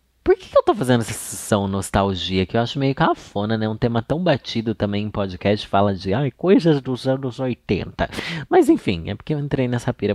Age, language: 20-39, Portuguese